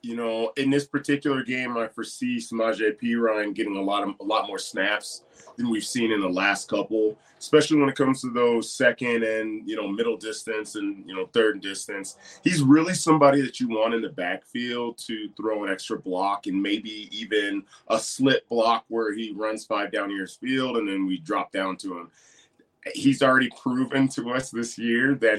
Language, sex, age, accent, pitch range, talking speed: English, male, 30-49, American, 105-135 Hz, 200 wpm